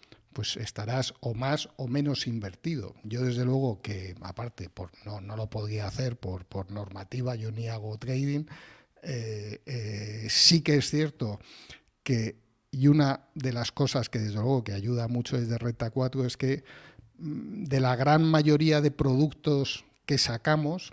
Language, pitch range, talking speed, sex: Spanish, 110-150 Hz, 160 wpm, male